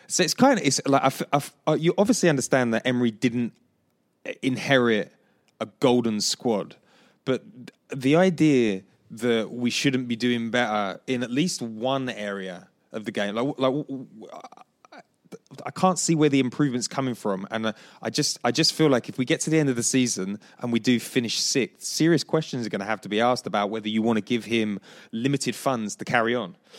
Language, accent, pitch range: English, British, 105-135 Hz